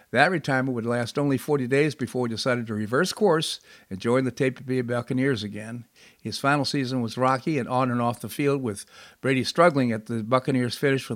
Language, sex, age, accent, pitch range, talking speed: English, male, 50-69, American, 115-135 Hz, 220 wpm